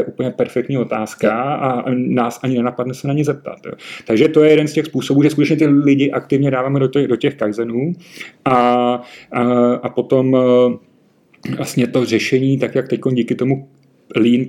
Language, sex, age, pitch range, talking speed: Slovak, male, 30-49, 115-125 Hz, 170 wpm